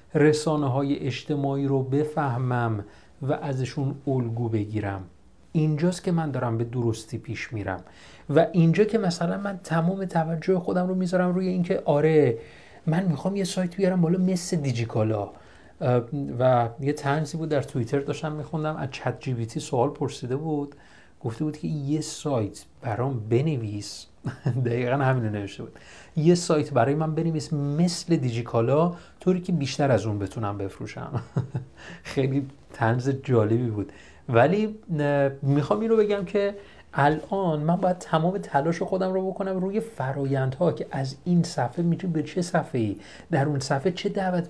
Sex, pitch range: male, 120-165 Hz